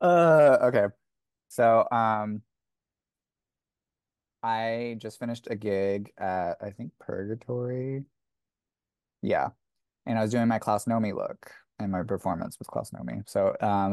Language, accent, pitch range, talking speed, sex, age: English, American, 105-120 Hz, 130 wpm, male, 20-39